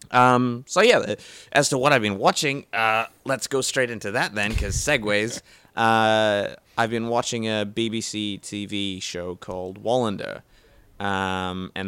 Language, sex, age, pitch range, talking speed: English, male, 20-39, 100-130 Hz, 150 wpm